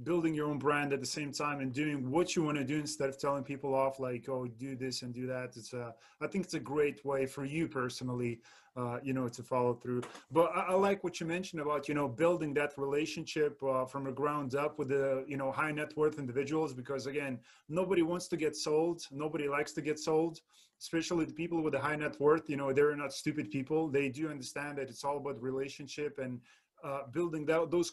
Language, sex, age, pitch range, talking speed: English, male, 30-49, 135-155 Hz, 235 wpm